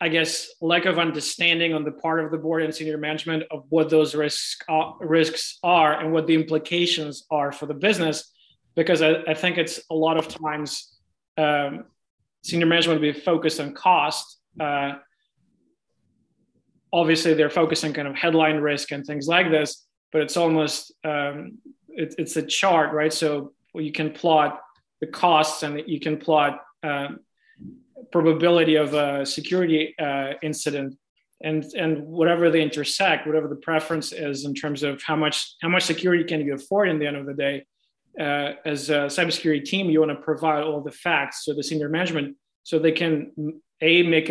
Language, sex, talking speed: English, male, 175 wpm